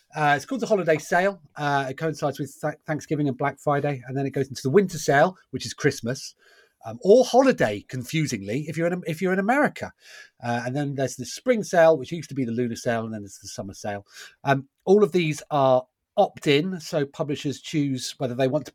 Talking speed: 225 wpm